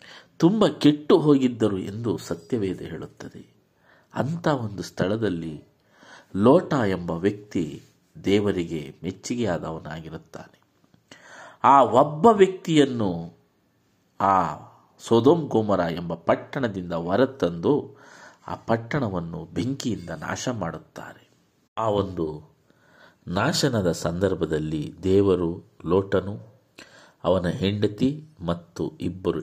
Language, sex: Kannada, male